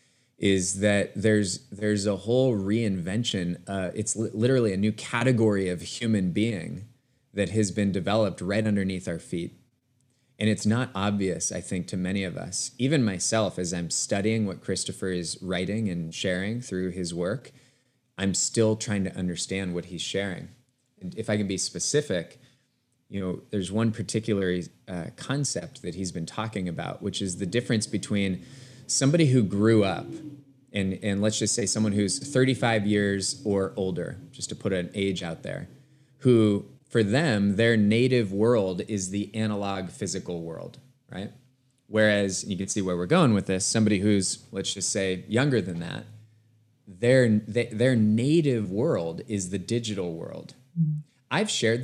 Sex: male